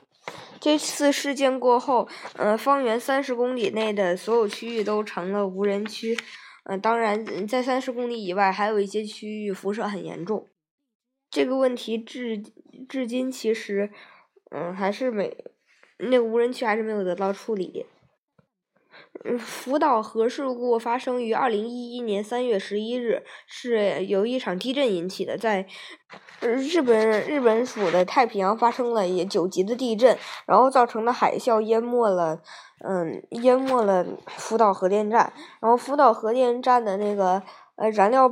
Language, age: Chinese, 20-39